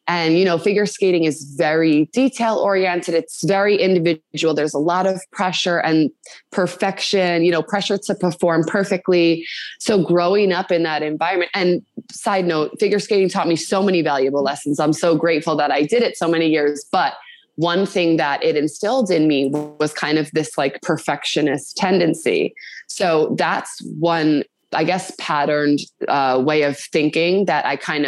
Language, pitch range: English, 150-180 Hz